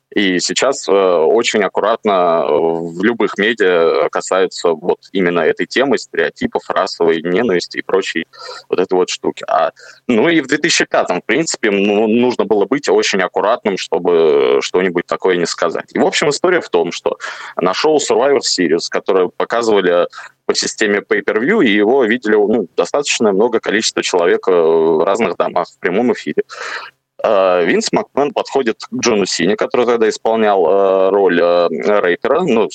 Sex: male